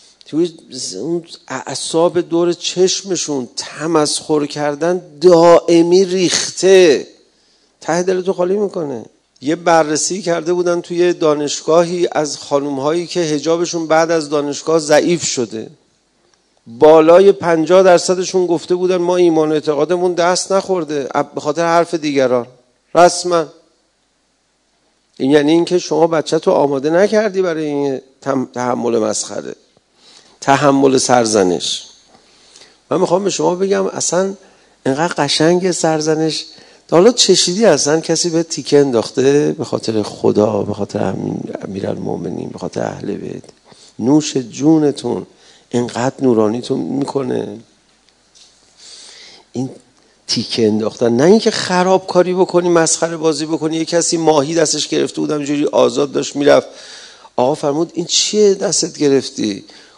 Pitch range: 140-175 Hz